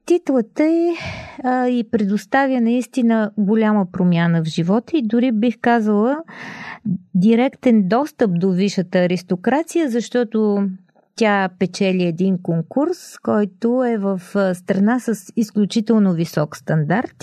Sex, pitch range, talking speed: female, 185-240 Hz, 110 wpm